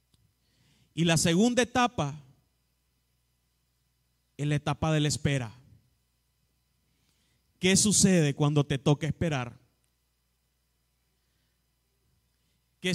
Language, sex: Spanish, male